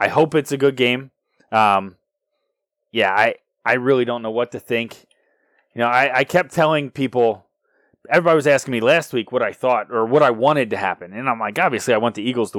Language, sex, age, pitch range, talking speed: English, male, 20-39, 115-155 Hz, 225 wpm